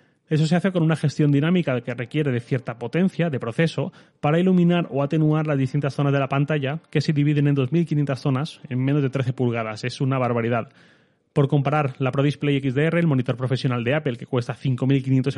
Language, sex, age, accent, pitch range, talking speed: Spanish, male, 30-49, Spanish, 135-155 Hz, 205 wpm